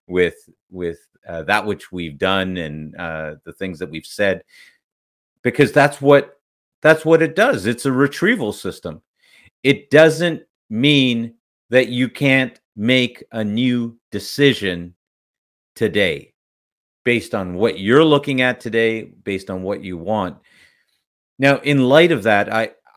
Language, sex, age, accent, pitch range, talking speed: English, male, 40-59, American, 100-145 Hz, 140 wpm